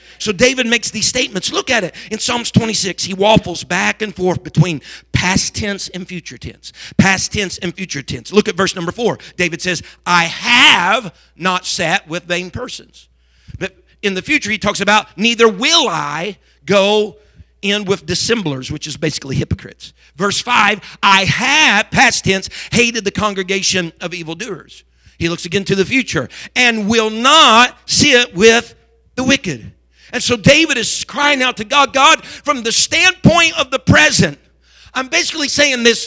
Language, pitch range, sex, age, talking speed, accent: English, 180-255 Hz, male, 50-69, 170 wpm, American